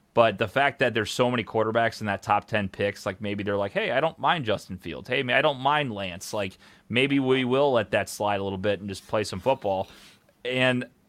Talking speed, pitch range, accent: 240 wpm, 105-135 Hz, American